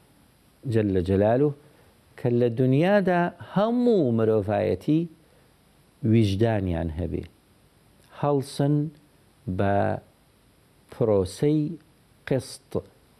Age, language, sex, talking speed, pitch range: 60-79, English, male, 60 wpm, 105-145 Hz